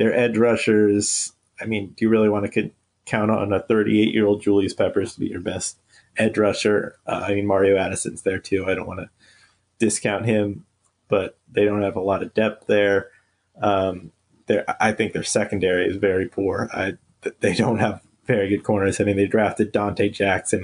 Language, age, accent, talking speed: English, 30-49, American, 190 wpm